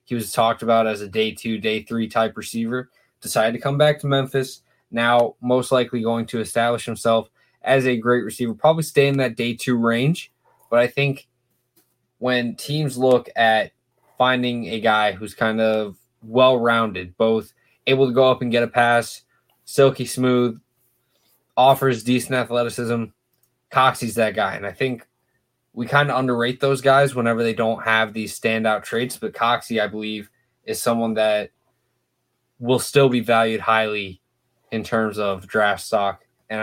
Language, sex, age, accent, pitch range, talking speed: English, male, 20-39, American, 110-130 Hz, 165 wpm